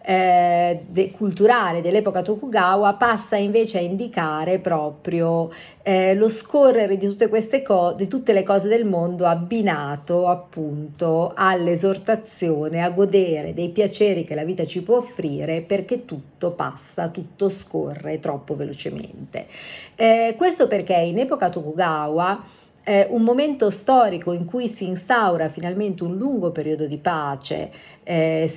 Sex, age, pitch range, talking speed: female, 40-59, 160-210 Hz, 125 wpm